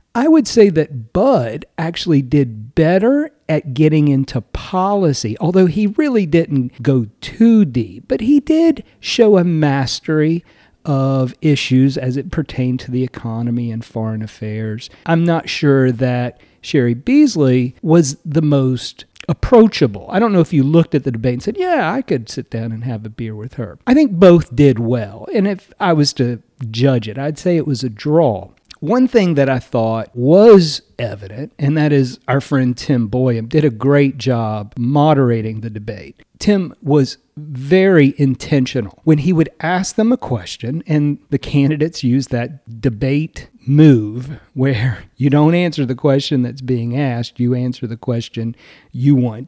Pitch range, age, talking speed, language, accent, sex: 125-165 Hz, 50-69, 170 wpm, English, American, male